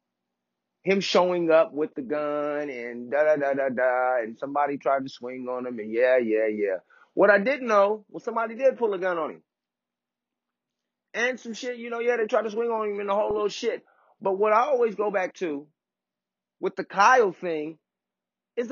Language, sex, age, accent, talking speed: English, male, 30-49, American, 205 wpm